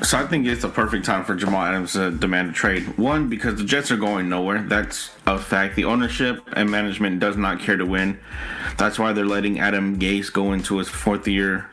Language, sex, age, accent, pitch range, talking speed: English, male, 30-49, American, 95-110 Hz, 225 wpm